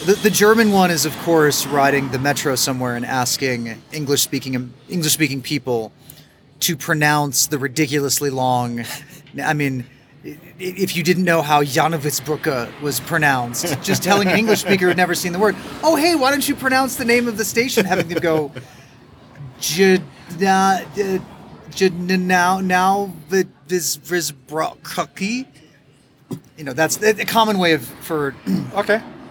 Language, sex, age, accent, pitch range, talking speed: English, male, 30-49, American, 135-185 Hz, 140 wpm